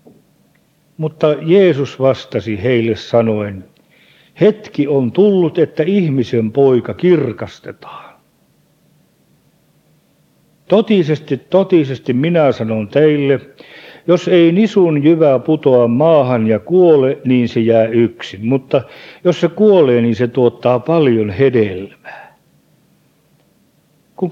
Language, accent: Finnish, native